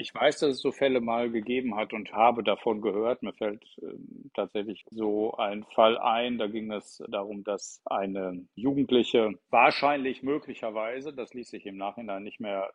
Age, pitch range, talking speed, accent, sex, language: 50-69, 100-115 Hz, 175 wpm, German, male, German